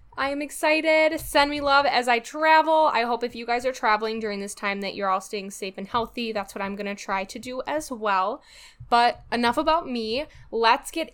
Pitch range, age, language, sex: 200-255 Hz, 10-29, English, female